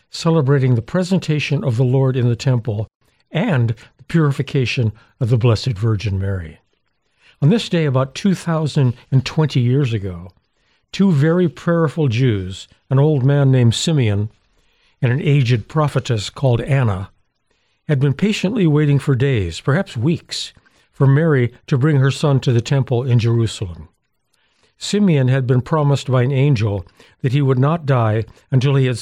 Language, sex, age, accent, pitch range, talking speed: English, male, 60-79, American, 120-150 Hz, 150 wpm